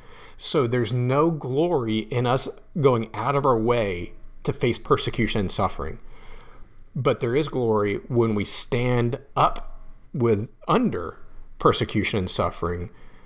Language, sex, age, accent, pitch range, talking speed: English, male, 40-59, American, 105-135 Hz, 130 wpm